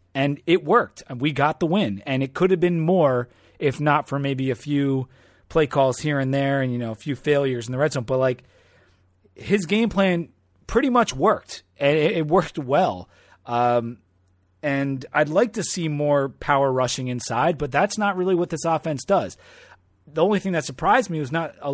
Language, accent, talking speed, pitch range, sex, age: English, American, 205 wpm, 125-160 Hz, male, 30-49